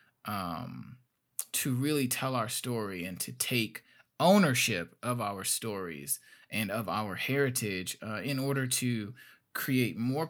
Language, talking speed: English, 135 wpm